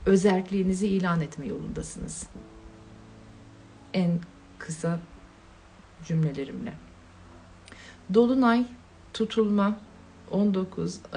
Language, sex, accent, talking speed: Turkish, female, native, 55 wpm